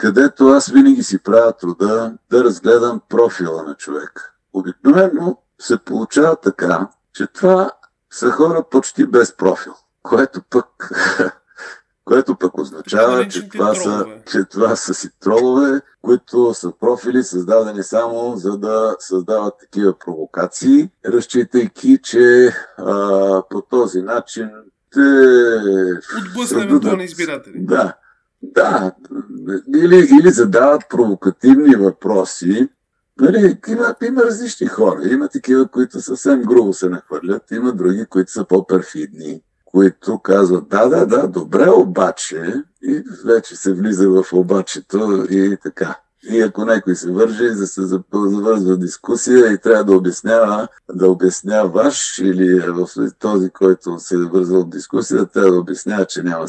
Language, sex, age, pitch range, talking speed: Bulgarian, male, 60-79, 95-130 Hz, 125 wpm